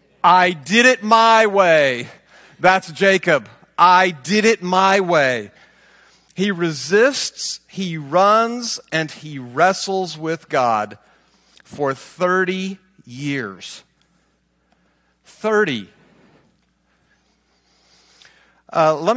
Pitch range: 140-210 Hz